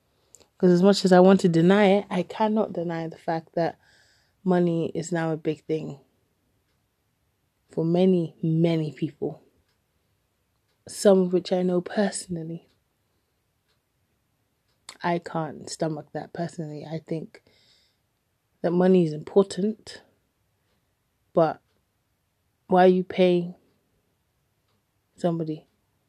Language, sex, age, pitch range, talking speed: English, female, 20-39, 155-180 Hz, 110 wpm